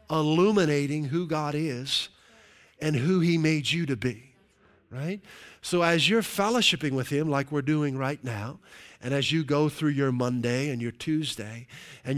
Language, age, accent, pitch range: English, 40-59, American, 125-165 Hz